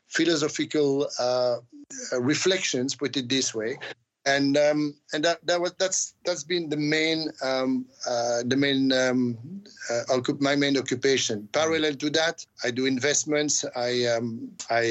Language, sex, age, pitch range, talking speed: English, male, 50-69, 125-150 Hz, 145 wpm